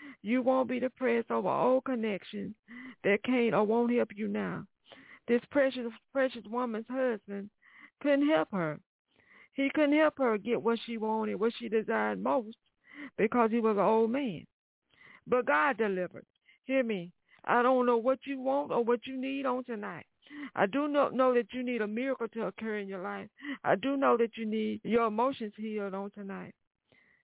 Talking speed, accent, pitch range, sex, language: 180 wpm, American, 220-255 Hz, female, English